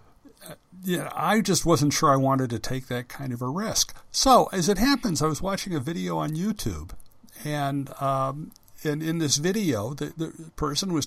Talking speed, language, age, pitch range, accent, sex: 190 wpm, English, 60-79, 120-160 Hz, American, male